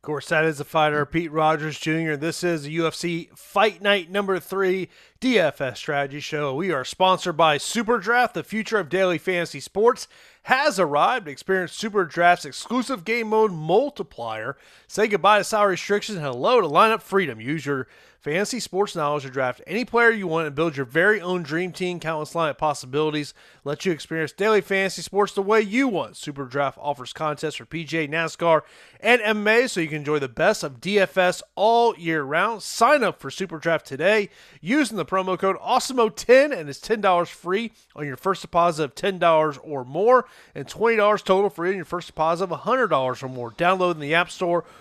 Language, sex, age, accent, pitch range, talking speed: English, male, 30-49, American, 155-205 Hz, 185 wpm